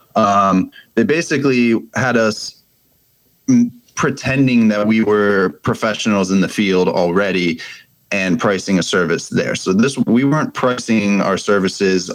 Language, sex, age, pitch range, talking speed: English, male, 20-39, 90-110 Hz, 130 wpm